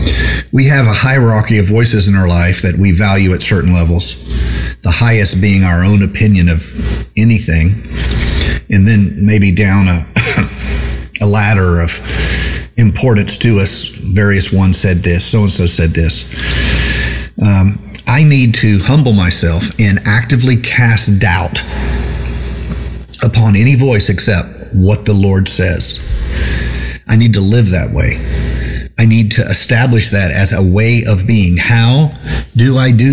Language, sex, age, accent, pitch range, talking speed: English, male, 50-69, American, 85-110 Hz, 145 wpm